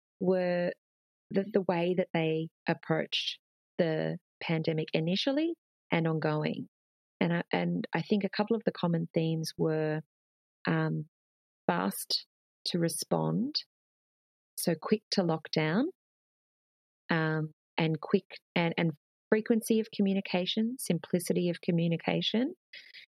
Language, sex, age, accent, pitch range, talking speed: English, female, 30-49, Australian, 155-185 Hz, 115 wpm